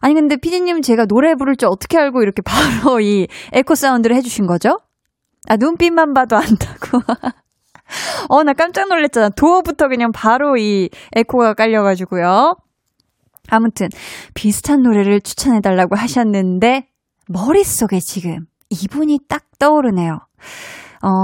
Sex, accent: female, native